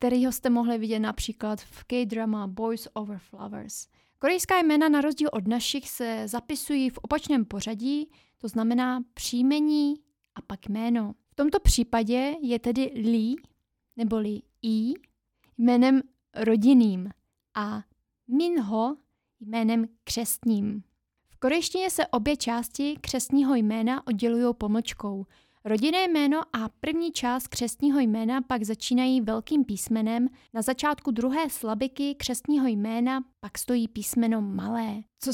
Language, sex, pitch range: Czech, female, 225-275 Hz